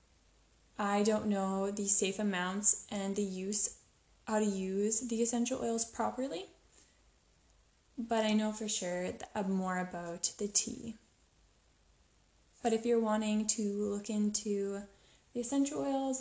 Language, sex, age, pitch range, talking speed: English, female, 10-29, 200-230 Hz, 135 wpm